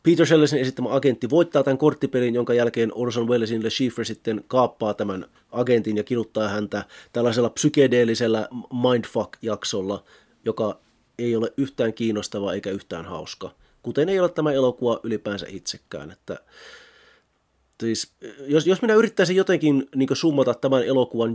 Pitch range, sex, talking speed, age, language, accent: 115-150 Hz, male, 140 wpm, 30-49, Finnish, native